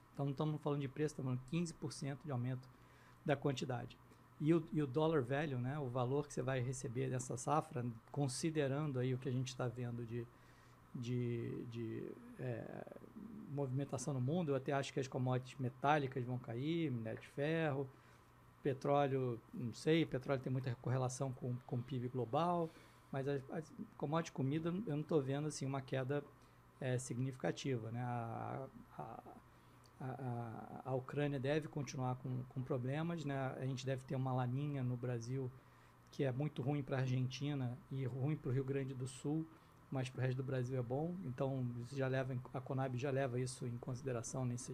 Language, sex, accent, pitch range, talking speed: Portuguese, male, Brazilian, 125-150 Hz, 180 wpm